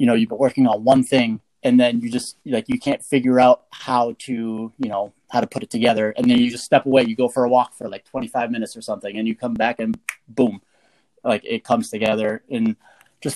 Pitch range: 110-130 Hz